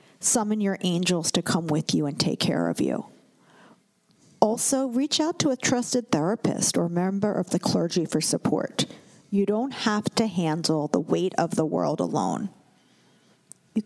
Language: English